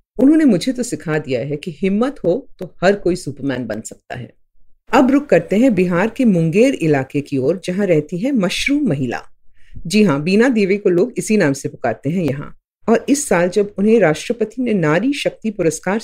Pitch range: 150-240 Hz